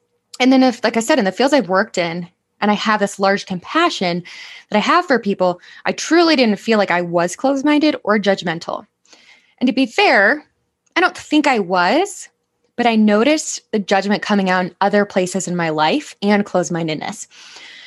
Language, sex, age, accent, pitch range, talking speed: English, female, 10-29, American, 180-255 Hz, 190 wpm